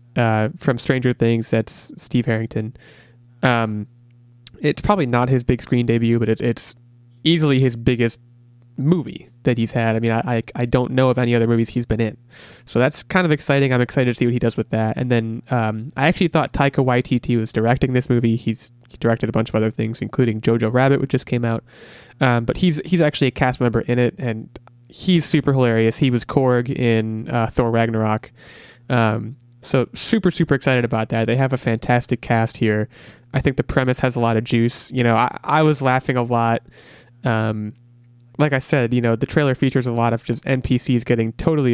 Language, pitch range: English, 115-135 Hz